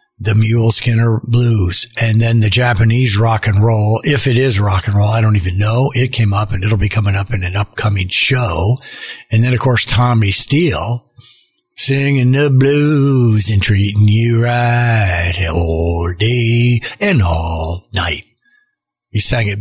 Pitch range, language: 105-125 Hz, English